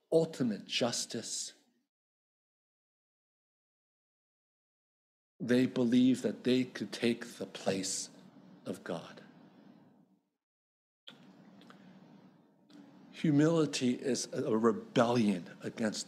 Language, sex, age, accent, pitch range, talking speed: English, male, 60-79, American, 115-160 Hz, 65 wpm